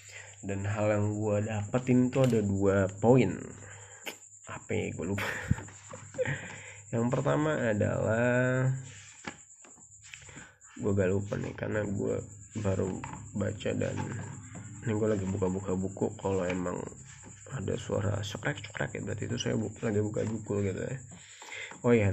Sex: male